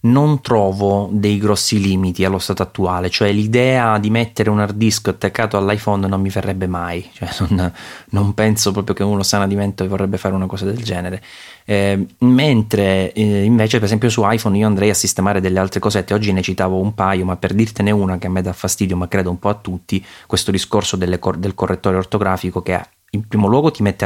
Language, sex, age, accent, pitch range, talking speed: Italian, male, 20-39, native, 90-105 Hz, 215 wpm